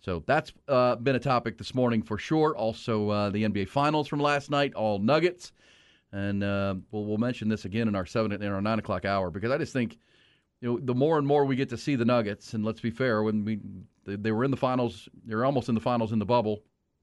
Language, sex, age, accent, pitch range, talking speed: English, male, 40-59, American, 105-135 Hz, 250 wpm